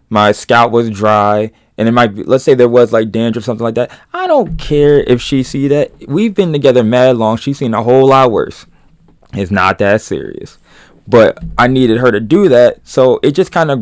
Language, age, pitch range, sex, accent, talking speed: English, 20-39, 110-135 Hz, male, American, 220 wpm